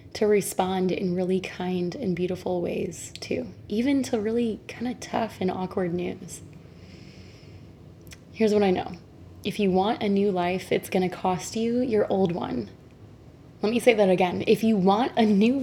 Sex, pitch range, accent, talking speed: female, 185-225 Hz, American, 175 wpm